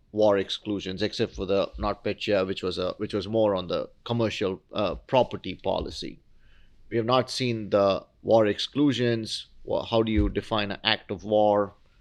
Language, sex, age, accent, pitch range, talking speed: English, male, 30-49, Indian, 100-115 Hz, 165 wpm